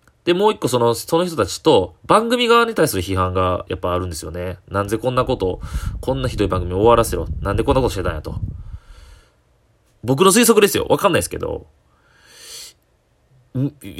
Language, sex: Japanese, male